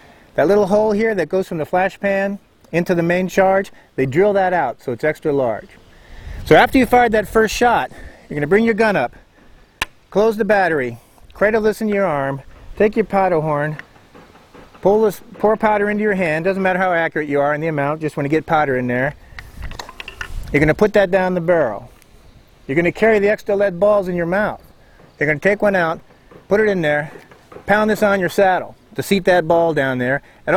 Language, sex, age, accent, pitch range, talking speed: English, male, 40-59, American, 150-205 Hz, 220 wpm